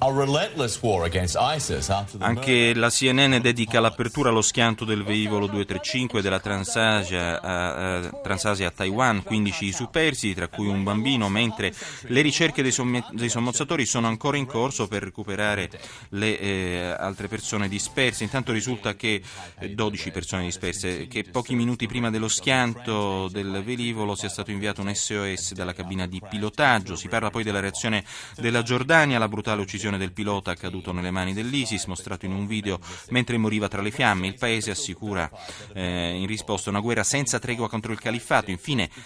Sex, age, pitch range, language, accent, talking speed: male, 30-49, 95-115 Hz, Italian, native, 160 wpm